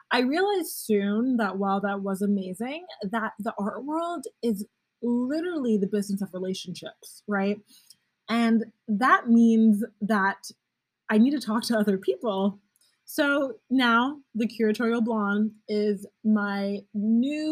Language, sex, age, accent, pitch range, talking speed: English, female, 20-39, American, 195-230 Hz, 130 wpm